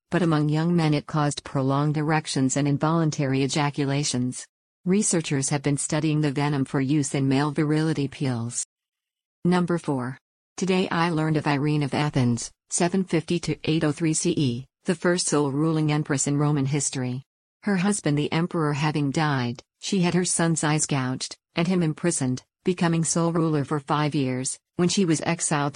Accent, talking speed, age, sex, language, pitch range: American, 155 wpm, 50-69, female, English, 140-170 Hz